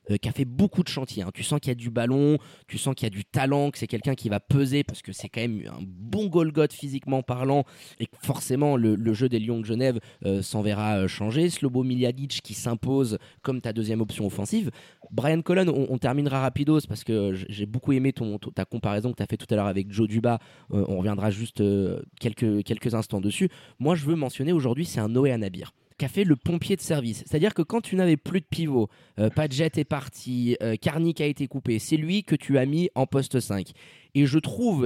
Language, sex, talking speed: French, male, 230 wpm